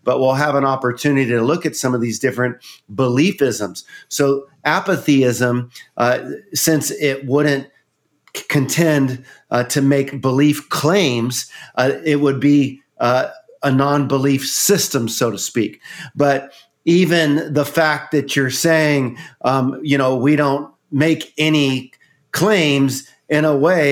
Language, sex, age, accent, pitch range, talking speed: English, male, 50-69, American, 135-155 Hz, 140 wpm